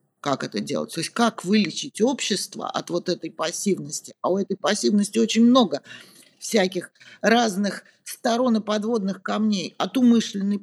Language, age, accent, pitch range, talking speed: Russian, 40-59, native, 190-230 Hz, 145 wpm